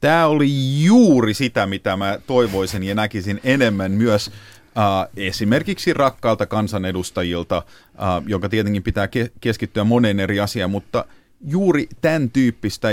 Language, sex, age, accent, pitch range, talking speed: Finnish, male, 30-49, native, 100-125 Hz, 130 wpm